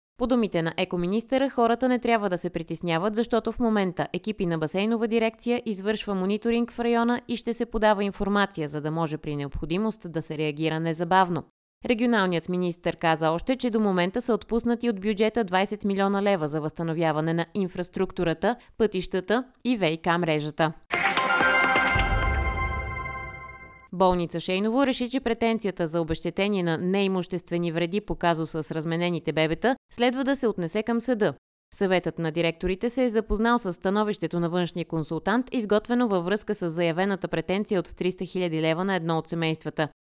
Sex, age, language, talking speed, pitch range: female, 20-39, Bulgarian, 155 wpm, 165-220 Hz